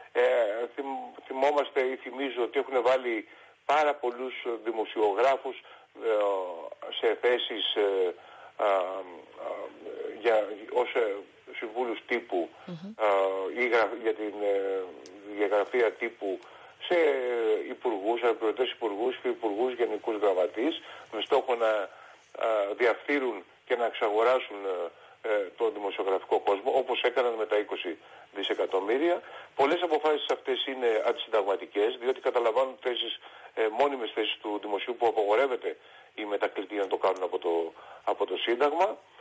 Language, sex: Greek, male